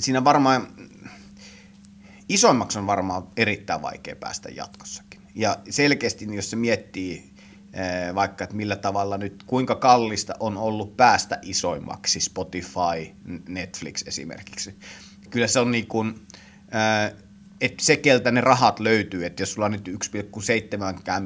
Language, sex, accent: Finnish, male, native